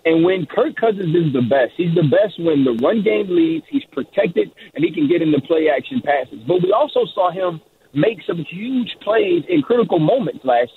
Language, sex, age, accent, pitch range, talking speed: English, male, 30-49, American, 150-215 Hz, 210 wpm